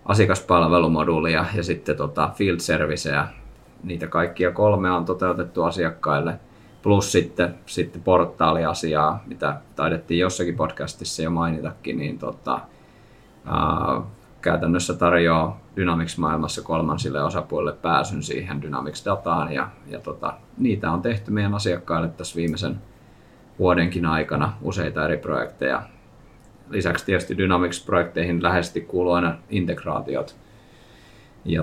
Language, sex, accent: Finnish, male, native